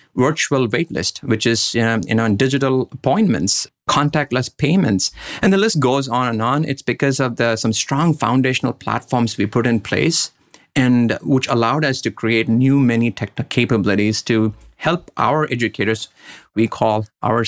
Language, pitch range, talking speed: English, 110-135 Hz, 165 wpm